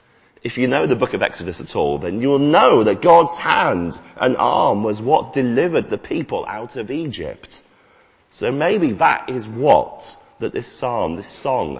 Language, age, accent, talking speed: English, 30-49, British, 180 wpm